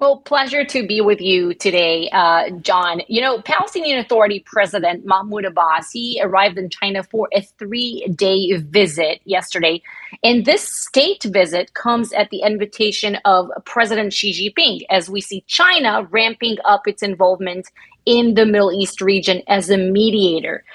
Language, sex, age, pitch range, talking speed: English, female, 30-49, 195-245 Hz, 155 wpm